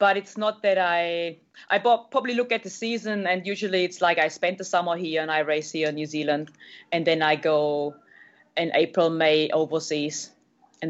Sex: female